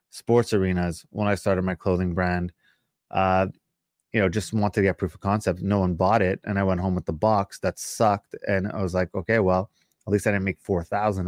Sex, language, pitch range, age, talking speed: male, English, 95-110 Hz, 20-39, 235 wpm